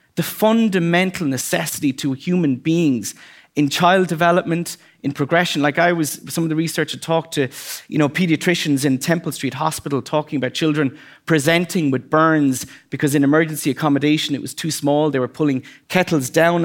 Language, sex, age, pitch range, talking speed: English, male, 30-49, 140-180 Hz, 170 wpm